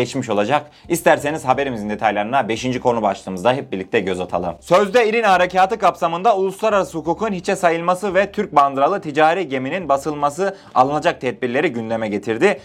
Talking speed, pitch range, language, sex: 140 wpm, 130-180 Hz, Turkish, male